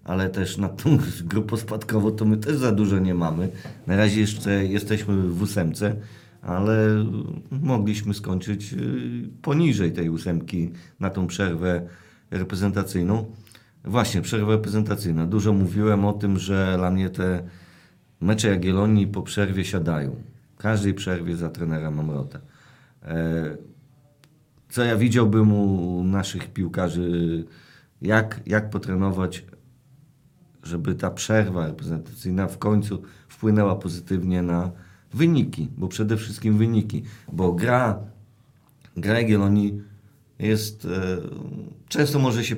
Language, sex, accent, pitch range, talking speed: Polish, male, native, 90-115 Hz, 115 wpm